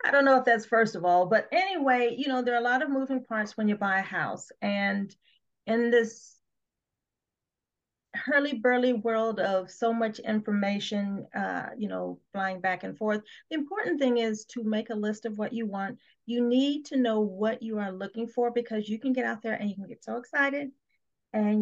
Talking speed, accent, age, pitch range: 210 wpm, American, 40-59, 205-250 Hz